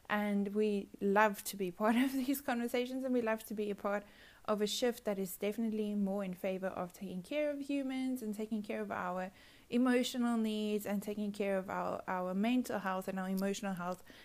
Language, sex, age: English, female, 20-39